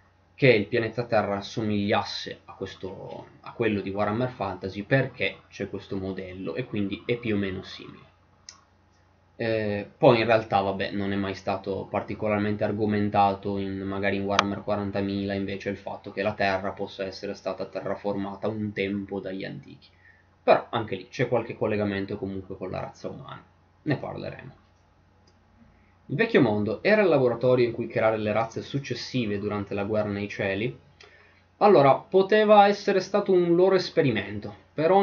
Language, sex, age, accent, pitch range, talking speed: Italian, male, 20-39, native, 95-115 Hz, 150 wpm